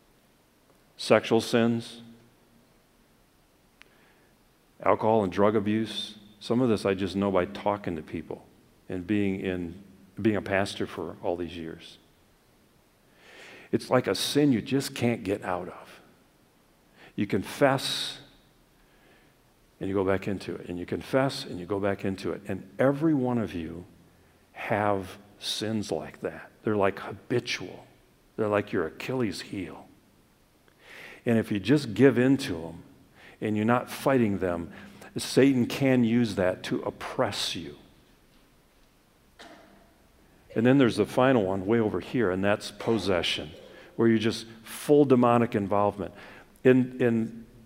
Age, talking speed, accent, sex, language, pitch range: 50-69, 140 wpm, American, male, English, 95-120 Hz